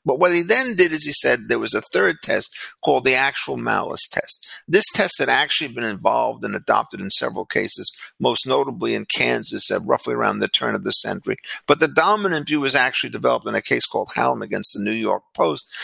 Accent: American